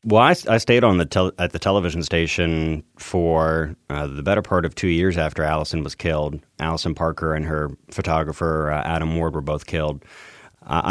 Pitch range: 80-90 Hz